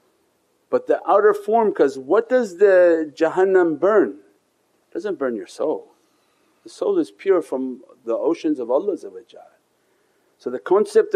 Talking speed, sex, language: 145 wpm, male, English